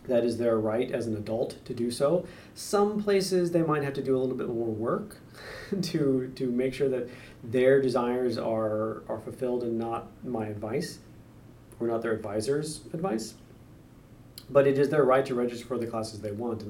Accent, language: American, English